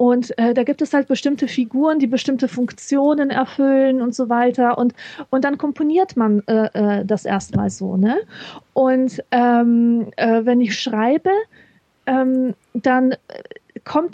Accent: German